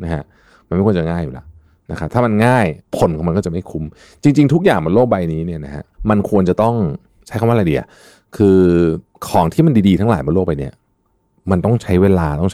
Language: Thai